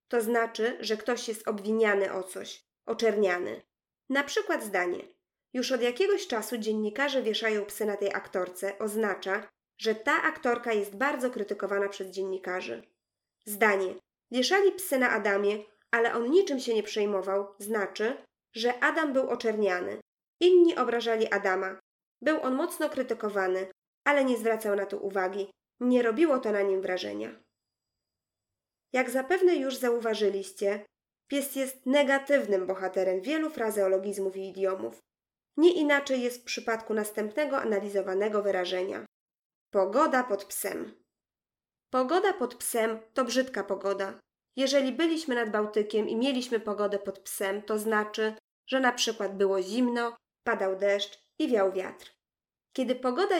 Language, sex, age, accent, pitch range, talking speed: Polish, female, 20-39, native, 195-255 Hz, 135 wpm